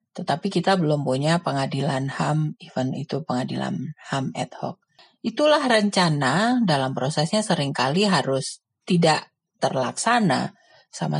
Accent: native